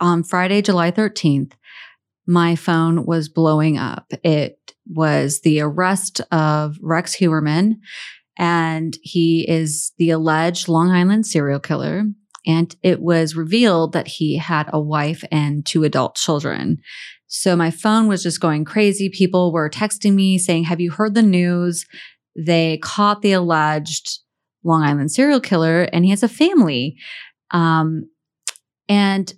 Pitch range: 160-195 Hz